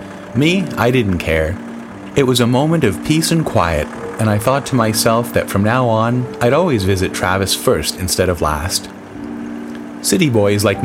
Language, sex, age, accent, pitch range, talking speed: English, male, 30-49, American, 90-120 Hz, 175 wpm